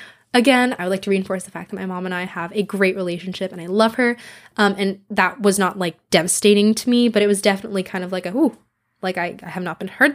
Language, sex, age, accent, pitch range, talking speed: English, female, 10-29, American, 185-230 Hz, 270 wpm